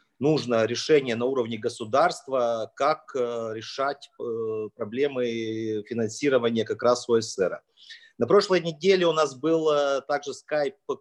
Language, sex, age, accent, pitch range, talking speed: Ukrainian, male, 30-49, native, 120-175 Hz, 110 wpm